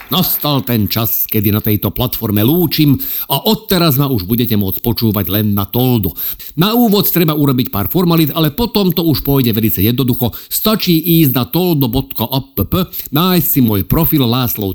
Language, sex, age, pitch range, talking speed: Slovak, male, 50-69, 110-175 Hz, 165 wpm